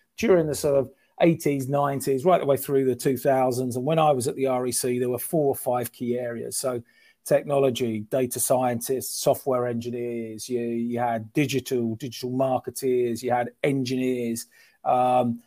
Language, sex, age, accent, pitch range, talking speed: English, male, 40-59, British, 125-145 Hz, 165 wpm